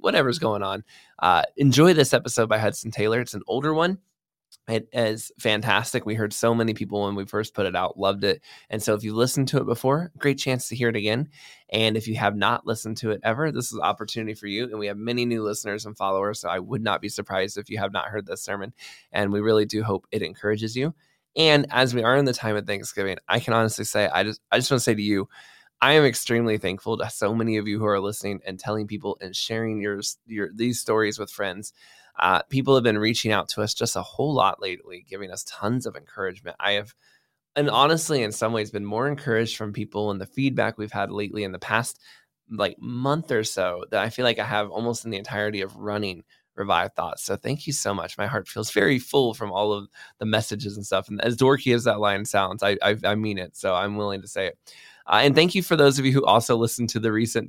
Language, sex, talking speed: English, male, 250 wpm